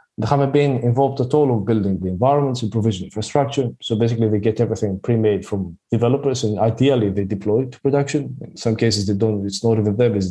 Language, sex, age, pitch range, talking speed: English, male, 20-39, 105-125 Hz, 220 wpm